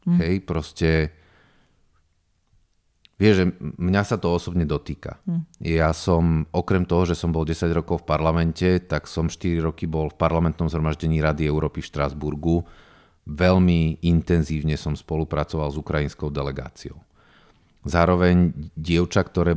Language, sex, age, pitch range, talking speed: Slovak, male, 40-59, 80-90 Hz, 120 wpm